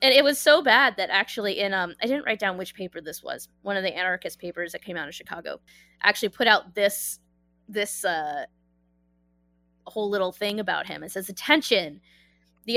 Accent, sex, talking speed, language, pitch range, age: American, female, 195 wpm, English, 185-265 Hz, 20-39